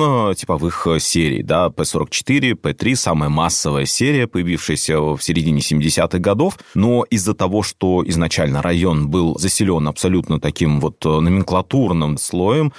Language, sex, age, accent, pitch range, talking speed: Russian, male, 30-49, native, 80-100 Hz, 130 wpm